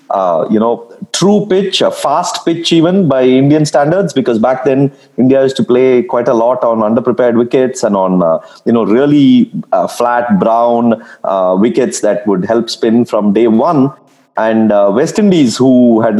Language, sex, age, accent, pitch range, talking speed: English, male, 30-49, Indian, 115-155 Hz, 180 wpm